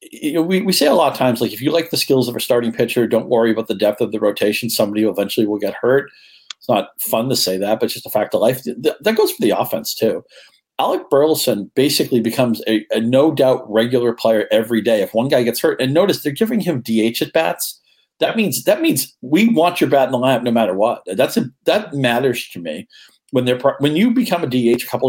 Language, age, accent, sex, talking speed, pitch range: English, 50-69, American, male, 255 wpm, 110-135 Hz